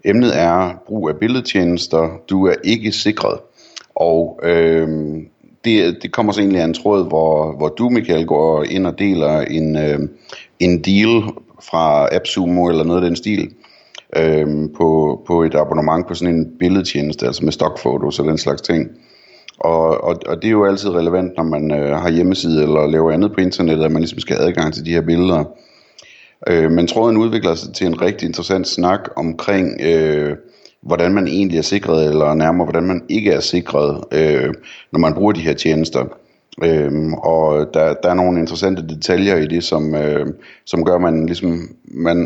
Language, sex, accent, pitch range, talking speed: Danish, male, native, 80-95 Hz, 185 wpm